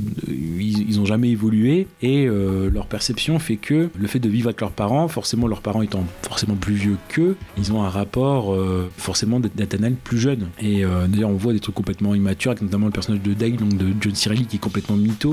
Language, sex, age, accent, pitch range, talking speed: French, male, 30-49, French, 100-115 Hz, 225 wpm